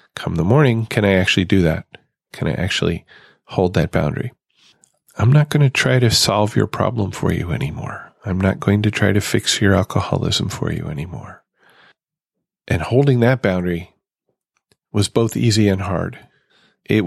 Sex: male